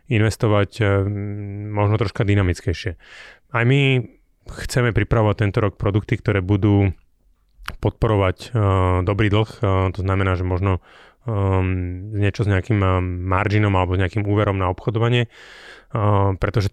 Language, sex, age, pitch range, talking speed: Slovak, male, 30-49, 95-110 Hz, 110 wpm